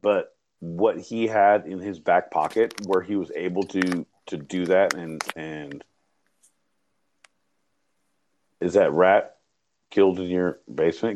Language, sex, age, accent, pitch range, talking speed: English, male, 40-59, American, 80-105 Hz, 135 wpm